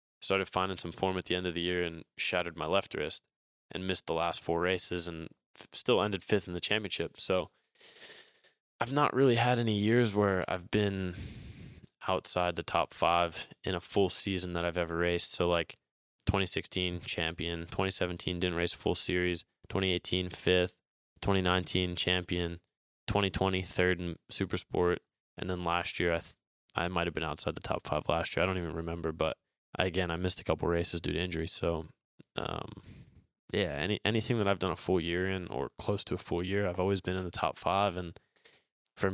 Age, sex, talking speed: 20-39, male, 195 wpm